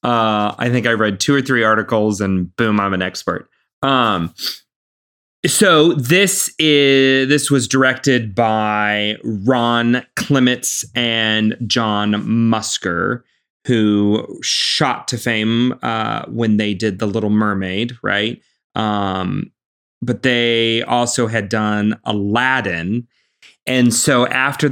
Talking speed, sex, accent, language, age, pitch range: 120 wpm, male, American, English, 30-49, 105-125 Hz